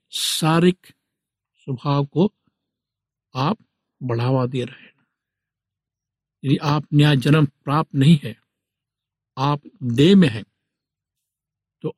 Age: 60-79